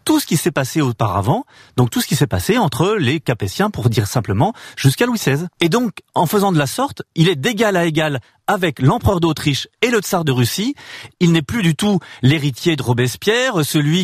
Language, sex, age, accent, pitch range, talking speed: French, male, 40-59, French, 125-180 Hz, 215 wpm